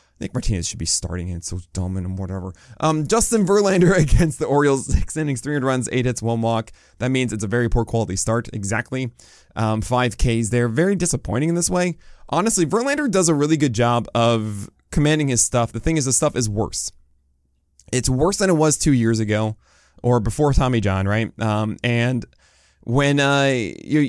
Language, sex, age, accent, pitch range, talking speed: English, male, 20-39, American, 110-150 Hz, 190 wpm